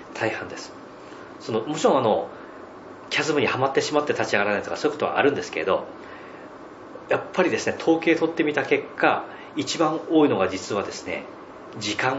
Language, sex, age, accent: Japanese, male, 40-59, native